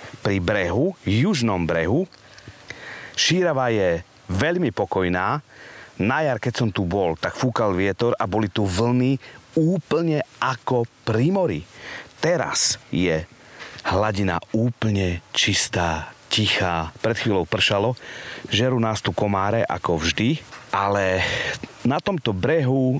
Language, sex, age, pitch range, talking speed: Slovak, male, 40-59, 95-130 Hz, 115 wpm